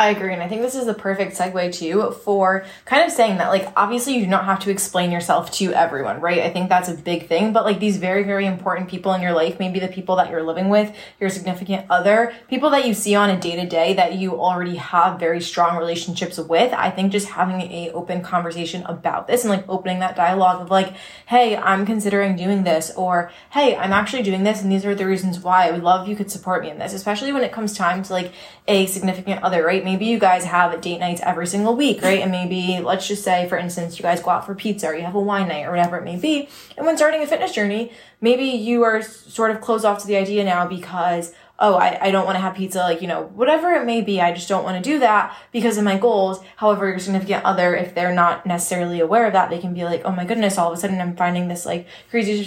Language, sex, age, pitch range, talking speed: English, female, 20-39, 180-210 Hz, 260 wpm